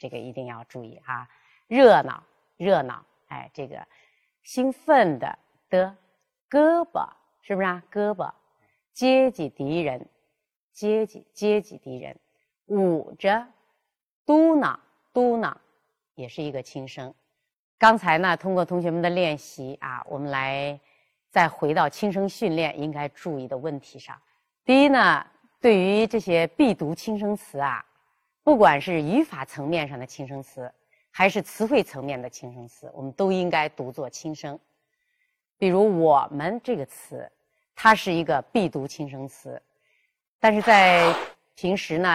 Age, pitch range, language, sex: 30-49, 145-215 Hz, Chinese, female